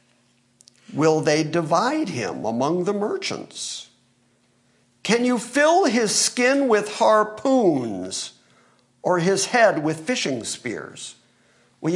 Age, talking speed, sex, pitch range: 50-69, 105 wpm, male, 135-215 Hz